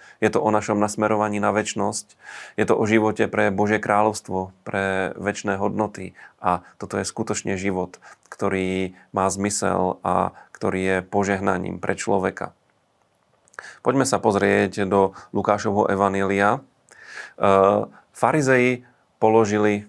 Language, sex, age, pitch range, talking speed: Slovak, male, 30-49, 100-110 Hz, 120 wpm